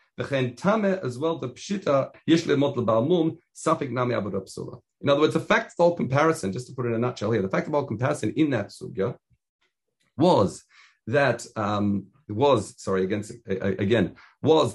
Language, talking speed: English, 125 wpm